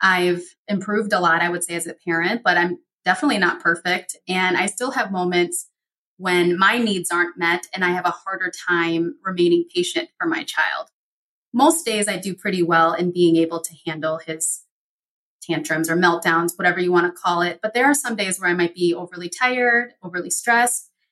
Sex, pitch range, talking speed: female, 175-210 Hz, 200 wpm